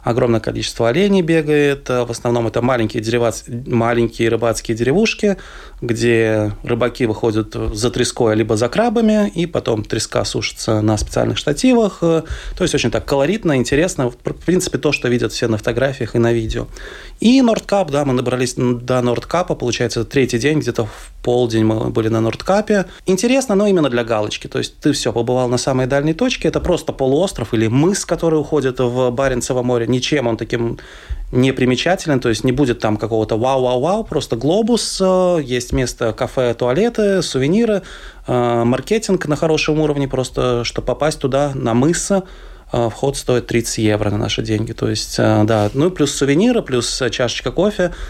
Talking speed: 160 wpm